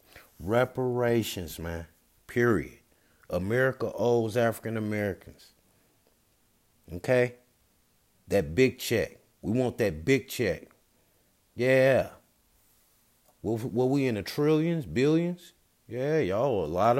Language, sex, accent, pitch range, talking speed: English, male, American, 95-125 Hz, 100 wpm